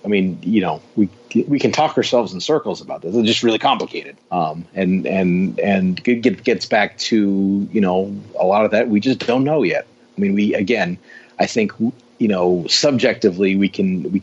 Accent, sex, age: American, male, 30-49